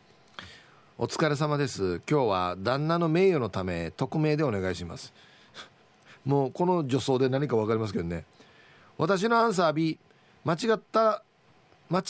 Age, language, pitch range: 40-59, Japanese, 120-195 Hz